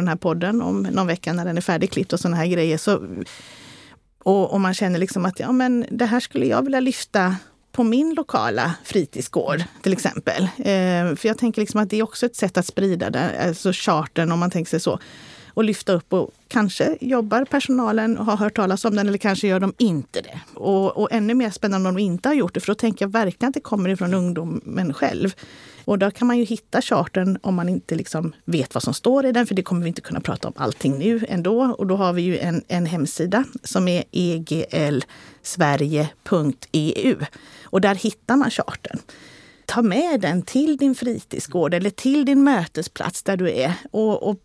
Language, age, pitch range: Swedish, 30-49, 170-230 Hz